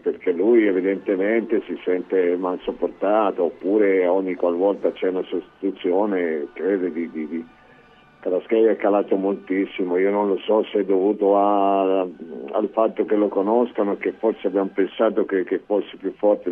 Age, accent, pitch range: 50-69, native, 95-105 Hz